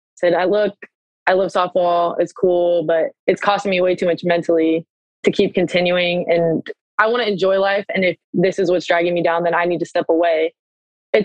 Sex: female